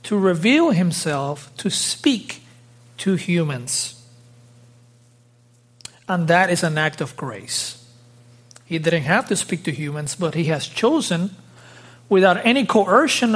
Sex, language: male, English